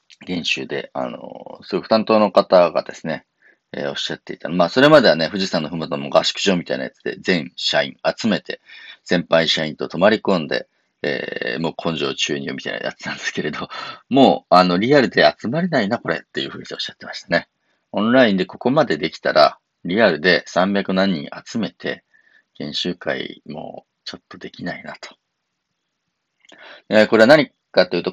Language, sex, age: Japanese, male, 40-59